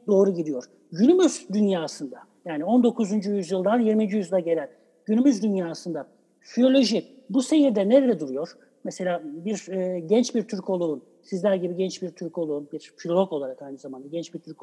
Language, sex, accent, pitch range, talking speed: Turkish, male, native, 170-230 Hz, 155 wpm